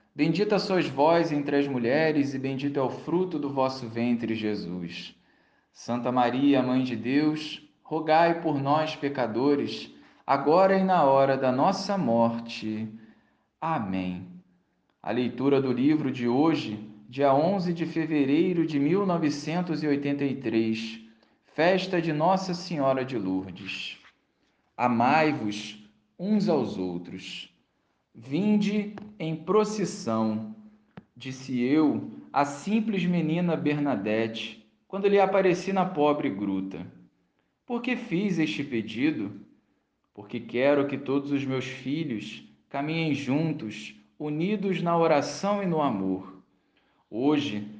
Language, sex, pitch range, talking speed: Portuguese, male, 110-165 Hz, 115 wpm